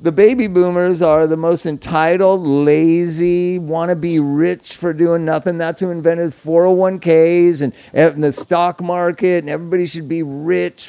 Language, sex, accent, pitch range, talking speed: English, male, American, 150-190 Hz, 160 wpm